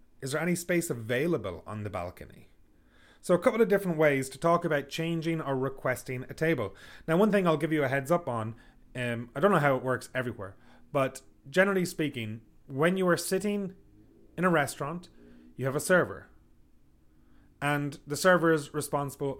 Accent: Irish